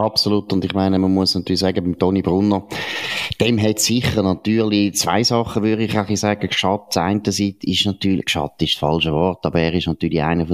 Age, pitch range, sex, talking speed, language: 30-49, 90-115 Hz, male, 195 wpm, German